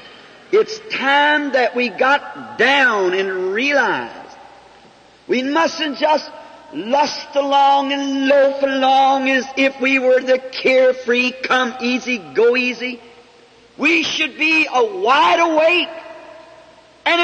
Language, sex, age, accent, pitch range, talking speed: English, male, 50-69, American, 255-295 Hz, 115 wpm